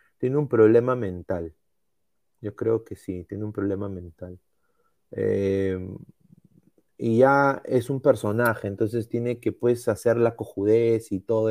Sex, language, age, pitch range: male, Spanish, 30-49, 105-155 Hz